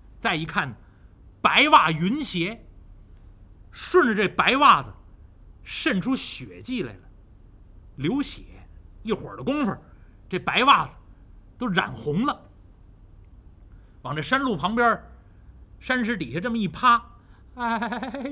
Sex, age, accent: male, 50-69, native